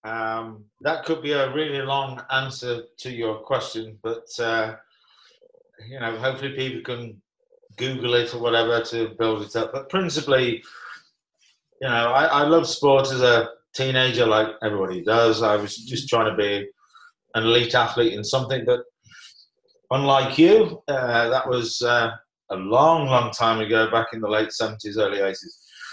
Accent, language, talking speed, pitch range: British, English, 160 wpm, 115-145 Hz